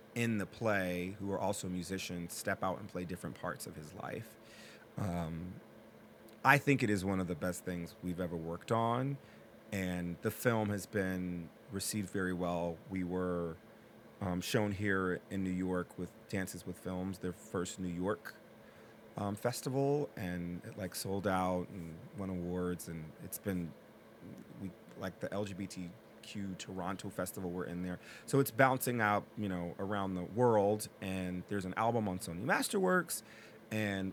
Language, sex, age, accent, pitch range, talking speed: English, male, 30-49, American, 90-110 Hz, 165 wpm